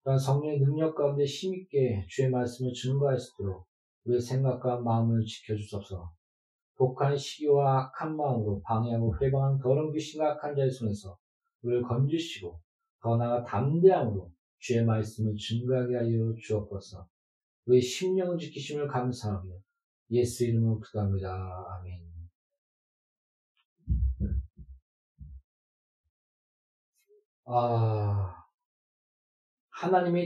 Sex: male